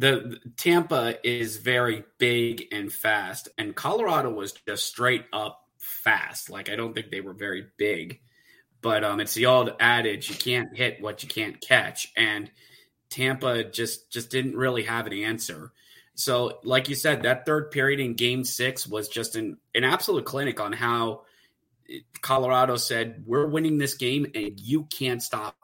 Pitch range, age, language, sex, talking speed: 115-135 Hz, 30-49, English, male, 170 wpm